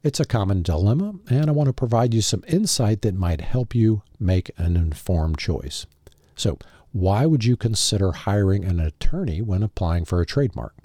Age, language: 50-69, English